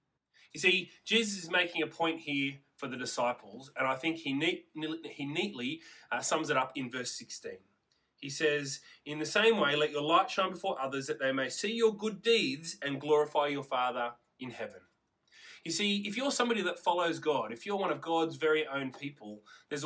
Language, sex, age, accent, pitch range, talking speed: English, male, 30-49, Australian, 150-190 Hz, 200 wpm